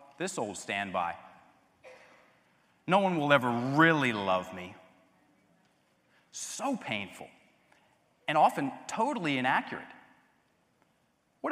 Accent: American